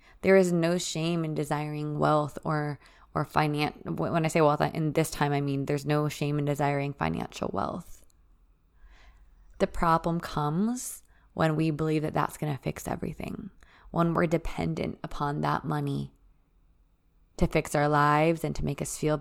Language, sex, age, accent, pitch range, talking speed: English, female, 20-39, American, 140-165 Hz, 165 wpm